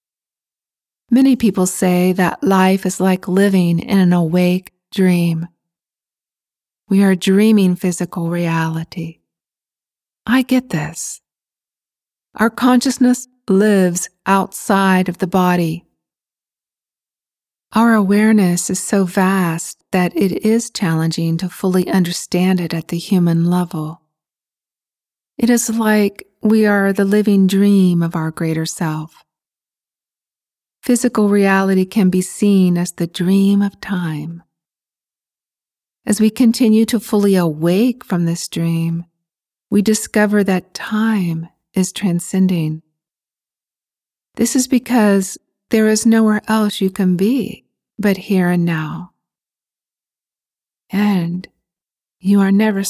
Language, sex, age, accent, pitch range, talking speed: English, female, 40-59, American, 175-210 Hz, 110 wpm